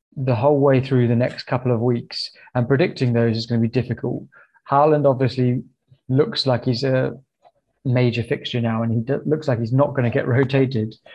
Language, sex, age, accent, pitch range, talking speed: English, male, 20-39, British, 115-140 Hz, 200 wpm